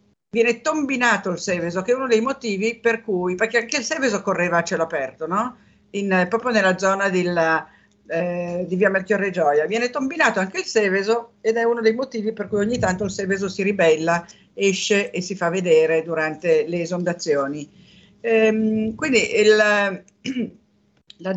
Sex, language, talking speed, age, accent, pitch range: female, Italian, 170 wpm, 50-69, native, 180-235 Hz